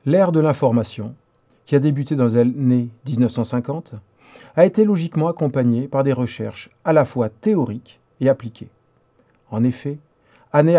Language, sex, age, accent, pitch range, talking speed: French, male, 40-59, French, 120-155 Hz, 140 wpm